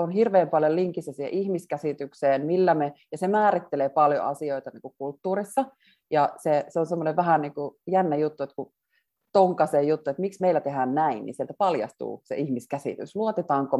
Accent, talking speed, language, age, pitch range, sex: native, 175 wpm, Finnish, 30-49, 140-190 Hz, female